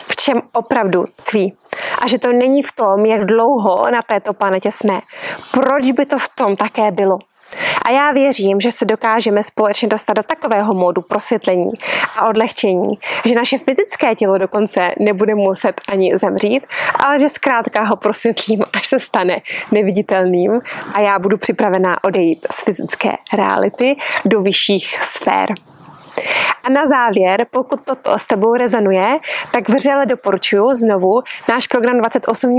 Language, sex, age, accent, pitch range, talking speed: Czech, female, 20-39, native, 210-260 Hz, 150 wpm